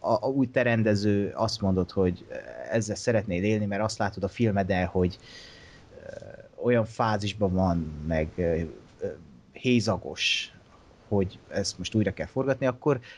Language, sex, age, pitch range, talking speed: Hungarian, male, 30-49, 95-120 Hz, 130 wpm